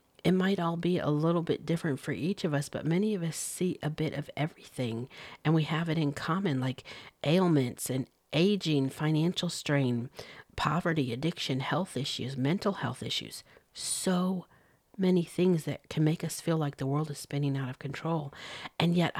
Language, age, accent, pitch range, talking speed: English, 50-69, American, 140-180 Hz, 180 wpm